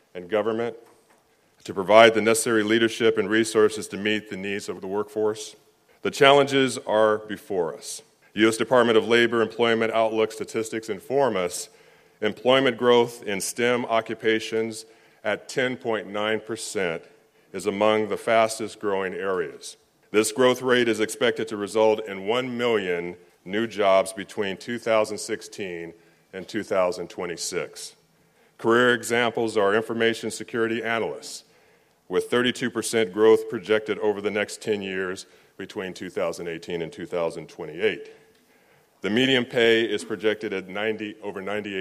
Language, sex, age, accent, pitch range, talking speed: English, male, 40-59, American, 105-115 Hz, 120 wpm